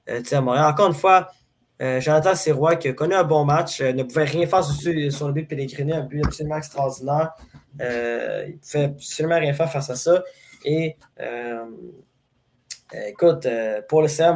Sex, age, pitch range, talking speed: male, 20-39, 135-160 Hz, 195 wpm